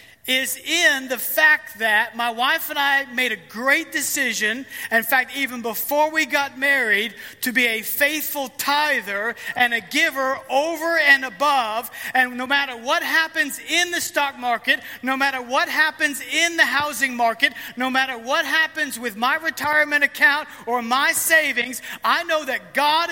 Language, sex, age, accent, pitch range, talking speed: English, male, 40-59, American, 245-310 Hz, 165 wpm